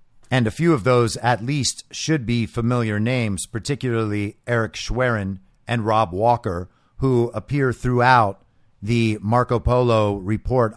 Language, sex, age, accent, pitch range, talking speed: English, male, 50-69, American, 110-150 Hz, 135 wpm